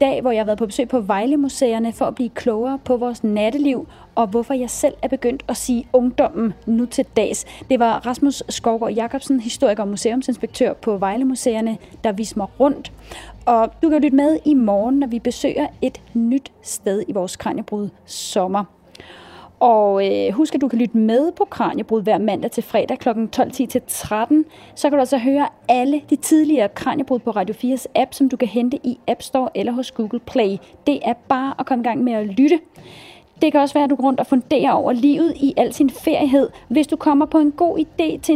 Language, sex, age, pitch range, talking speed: Danish, female, 30-49, 230-280 Hz, 210 wpm